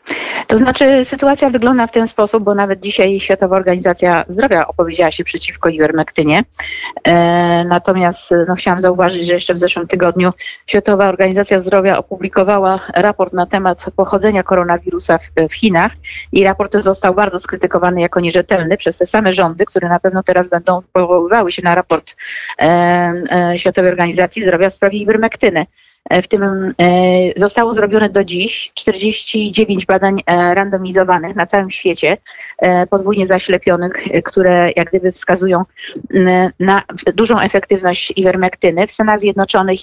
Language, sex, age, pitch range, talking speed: Polish, female, 30-49, 175-205 Hz, 135 wpm